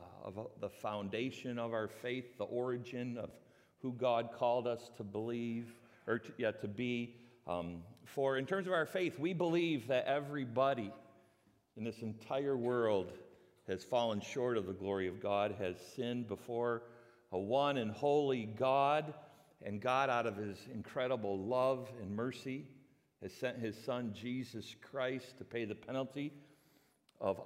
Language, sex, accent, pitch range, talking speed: English, male, American, 115-145 Hz, 155 wpm